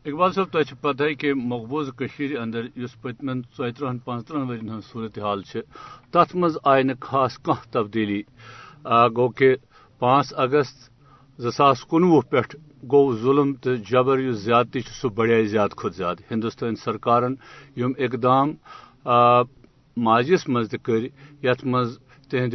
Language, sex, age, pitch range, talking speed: Urdu, male, 60-79, 120-140 Hz, 110 wpm